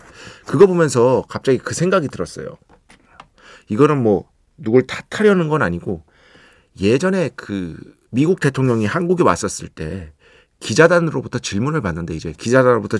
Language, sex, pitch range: Korean, male, 100-160 Hz